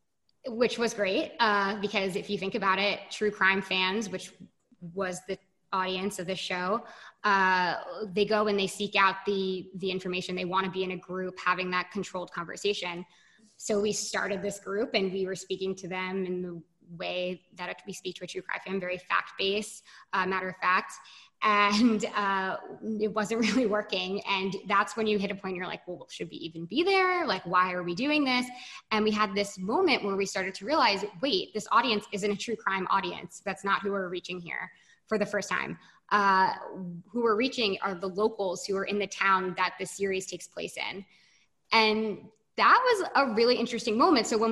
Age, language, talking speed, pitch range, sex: 20-39, English, 200 wpm, 185-215 Hz, female